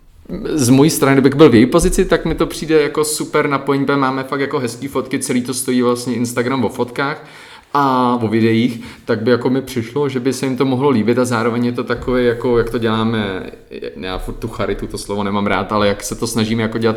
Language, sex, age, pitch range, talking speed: Czech, male, 30-49, 105-125 Hz, 230 wpm